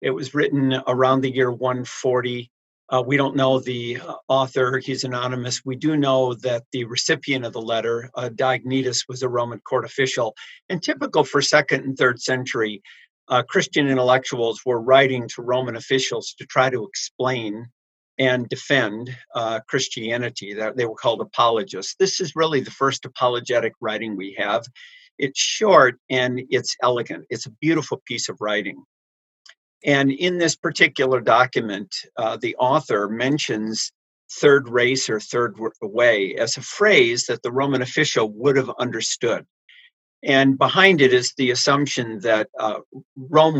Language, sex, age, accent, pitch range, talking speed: English, male, 50-69, American, 120-140 Hz, 155 wpm